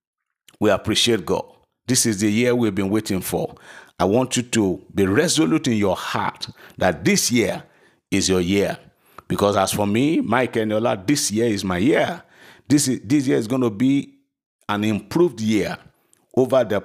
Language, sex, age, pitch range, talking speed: English, male, 50-69, 100-125 Hz, 185 wpm